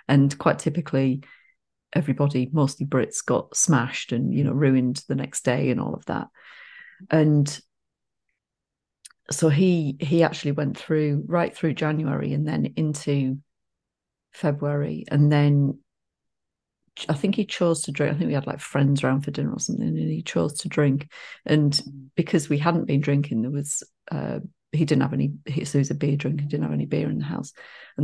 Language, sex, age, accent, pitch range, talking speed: English, female, 40-59, British, 140-175 Hz, 180 wpm